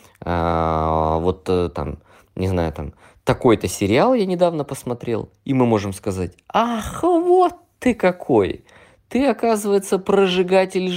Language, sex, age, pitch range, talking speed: Russian, male, 20-39, 90-125 Hz, 115 wpm